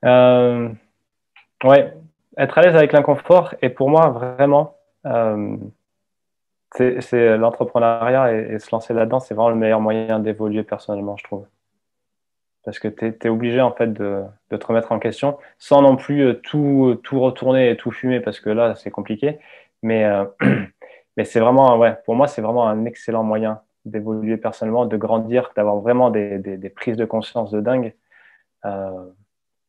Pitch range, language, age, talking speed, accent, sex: 110-125 Hz, French, 20-39, 170 wpm, French, male